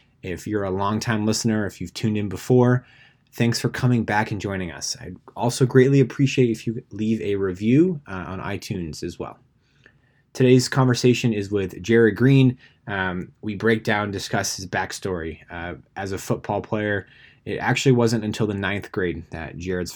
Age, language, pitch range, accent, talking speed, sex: 20-39, English, 95-120 Hz, American, 175 wpm, male